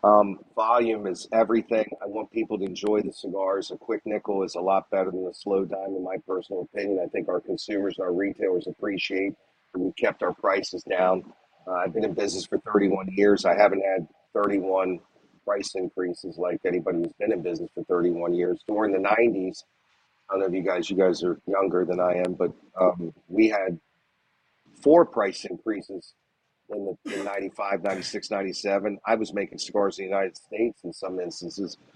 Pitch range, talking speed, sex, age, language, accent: 95-110 Hz, 190 wpm, male, 40-59, English, American